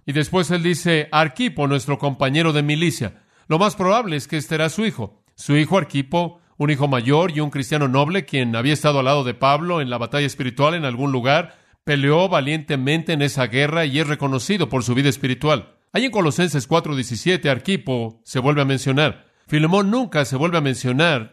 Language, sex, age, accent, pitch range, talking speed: Spanish, male, 50-69, Mexican, 135-165 Hz, 195 wpm